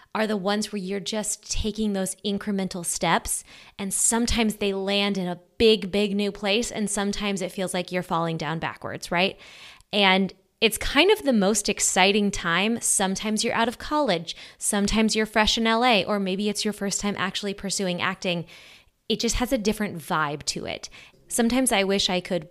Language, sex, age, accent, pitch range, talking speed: English, female, 20-39, American, 180-220 Hz, 185 wpm